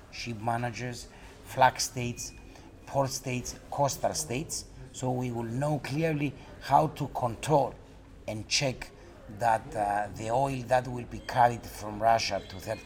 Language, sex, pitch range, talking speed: English, male, 110-135 Hz, 140 wpm